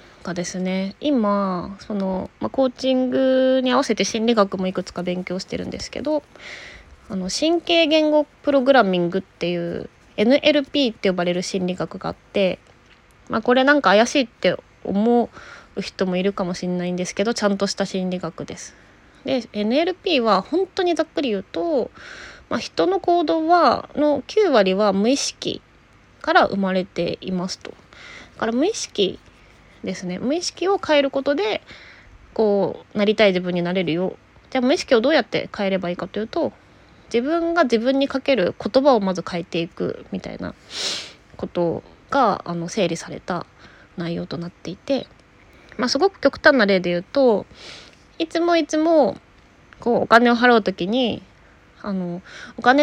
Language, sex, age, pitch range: Japanese, female, 20-39, 185-275 Hz